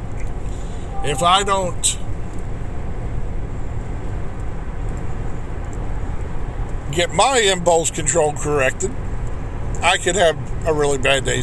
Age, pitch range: 50-69, 110-155 Hz